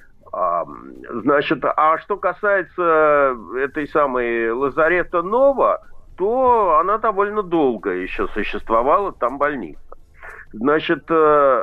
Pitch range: 135-215 Hz